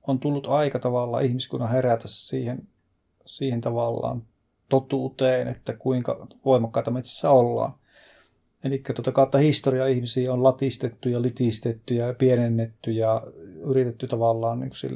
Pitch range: 115-130 Hz